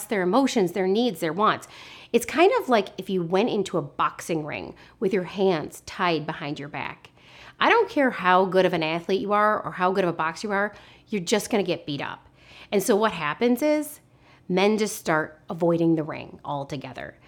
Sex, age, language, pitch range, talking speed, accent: female, 30-49, English, 170-215 Hz, 210 wpm, American